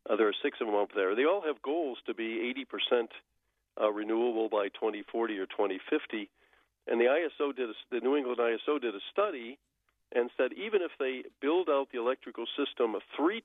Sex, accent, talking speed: male, American, 180 wpm